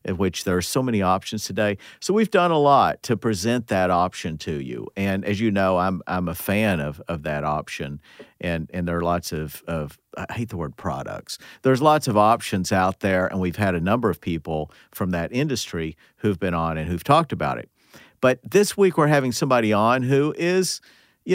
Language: English